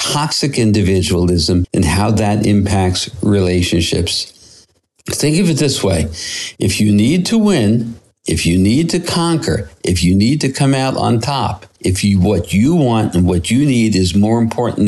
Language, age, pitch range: English, 60-79, 95-125 Hz